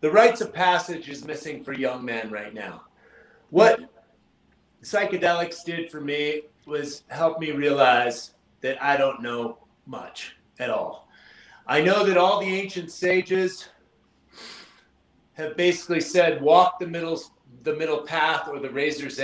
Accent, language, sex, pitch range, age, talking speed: American, English, male, 140-185 Hz, 30-49, 145 wpm